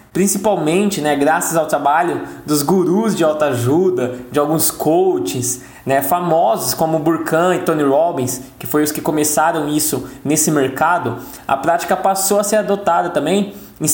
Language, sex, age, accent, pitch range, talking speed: Portuguese, male, 20-39, Brazilian, 165-215 Hz, 155 wpm